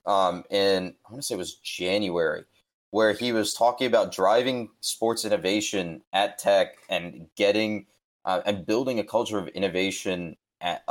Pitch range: 100-130 Hz